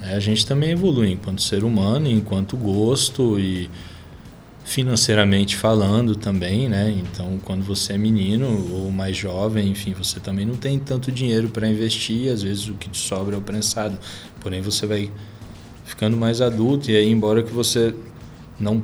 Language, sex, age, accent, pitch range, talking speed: Portuguese, male, 20-39, Brazilian, 95-115 Hz, 165 wpm